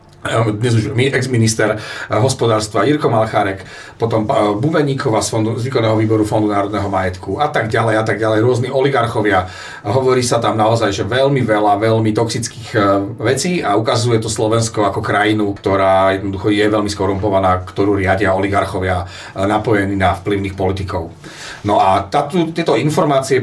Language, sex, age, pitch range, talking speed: Slovak, male, 40-59, 100-130 Hz, 140 wpm